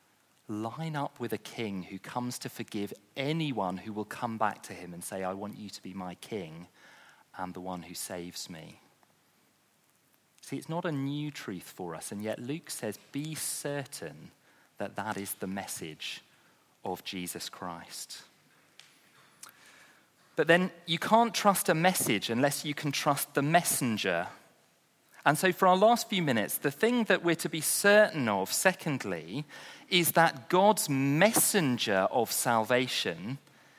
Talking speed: 155 wpm